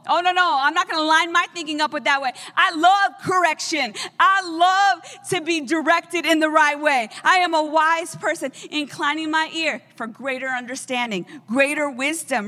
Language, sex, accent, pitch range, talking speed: English, female, American, 265-330 Hz, 190 wpm